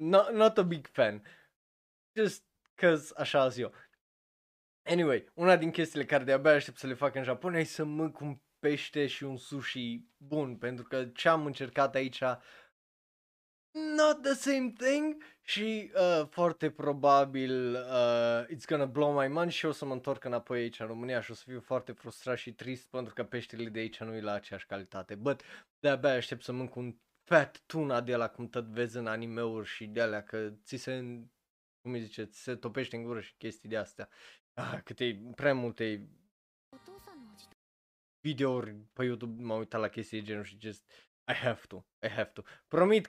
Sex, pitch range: male, 115-150 Hz